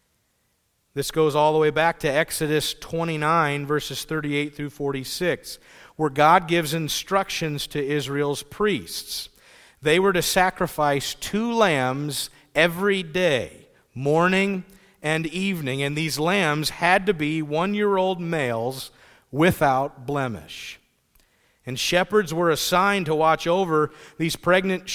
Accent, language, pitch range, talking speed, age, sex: American, English, 135-170 Hz, 120 wpm, 40-59, male